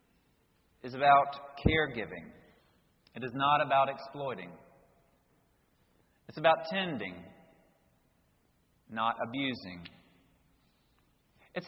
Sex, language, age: male, English, 40-59